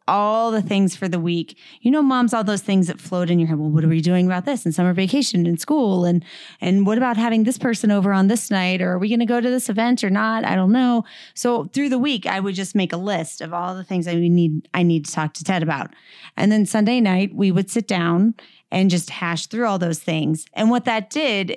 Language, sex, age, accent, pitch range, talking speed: English, female, 30-49, American, 180-220 Hz, 270 wpm